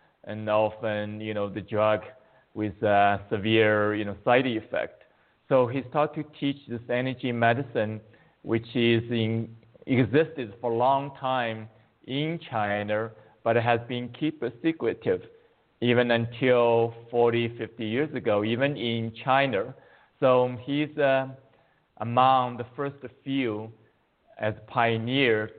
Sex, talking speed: male, 130 wpm